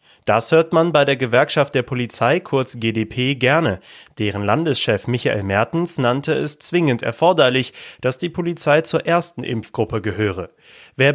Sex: male